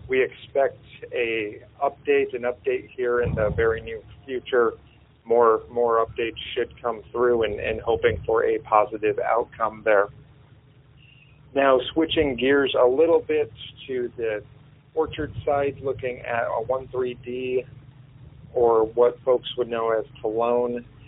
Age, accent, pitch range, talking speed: 40-59, American, 115-135 Hz, 135 wpm